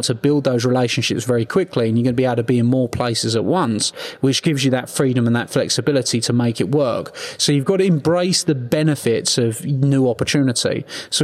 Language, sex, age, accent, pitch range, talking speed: English, male, 30-49, British, 120-145 Hz, 225 wpm